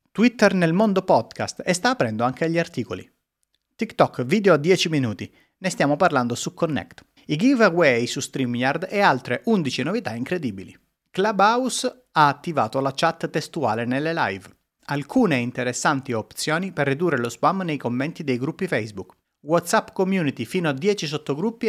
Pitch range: 125-185 Hz